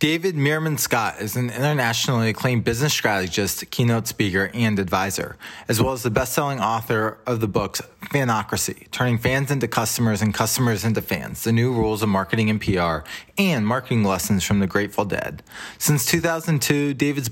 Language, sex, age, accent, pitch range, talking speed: English, male, 20-39, American, 105-135 Hz, 165 wpm